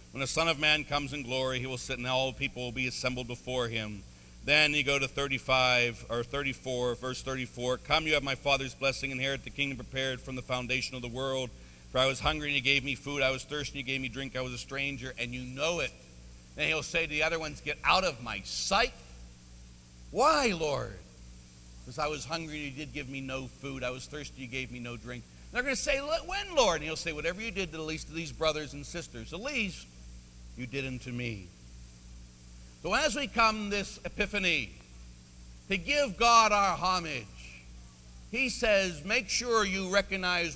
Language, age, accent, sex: English, 60-79, American, male